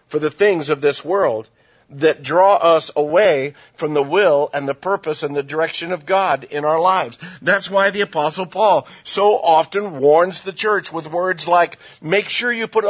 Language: English